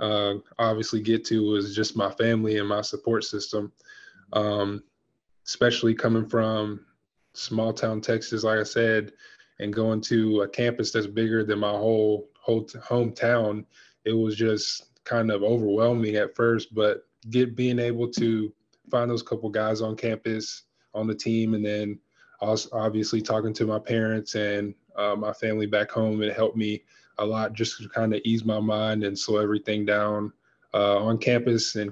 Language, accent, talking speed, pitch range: English, American, 170 wpm, 105-115 Hz